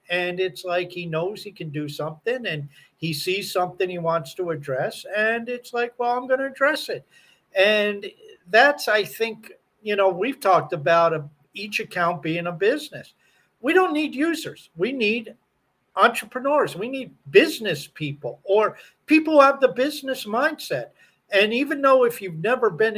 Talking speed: 170 wpm